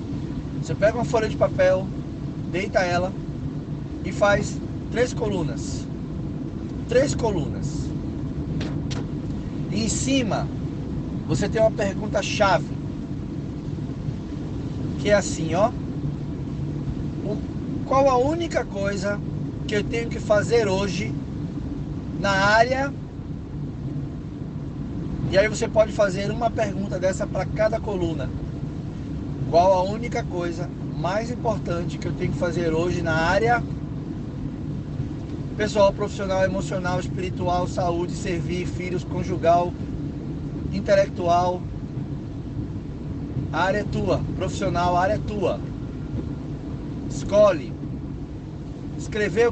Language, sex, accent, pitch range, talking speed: Portuguese, male, Brazilian, 140-190 Hz, 100 wpm